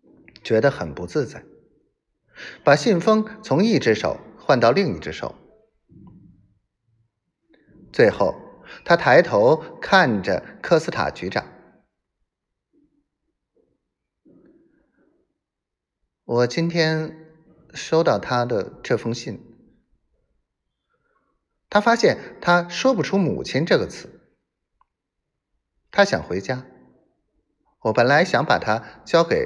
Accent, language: native, Chinese